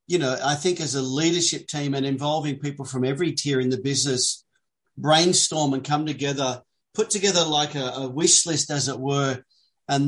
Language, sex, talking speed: English, male, 190 wpm